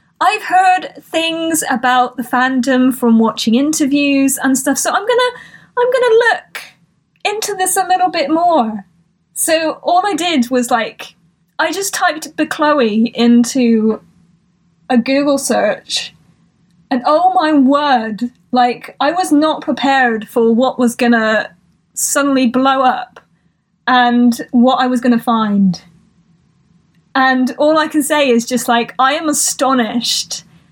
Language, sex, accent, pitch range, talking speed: English, female, British, 230-300 Hz, 145 wpm